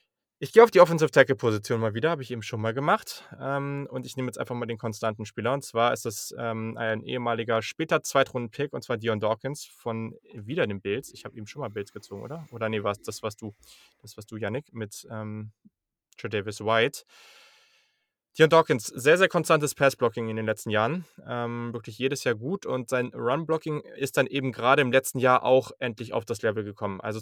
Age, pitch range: 20-39, 110-130 Hz